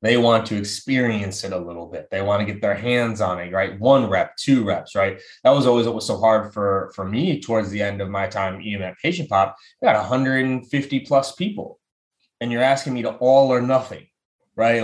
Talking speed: 225 wpm